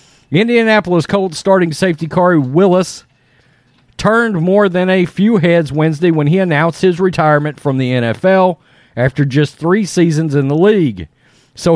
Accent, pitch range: American, 125-170 Hz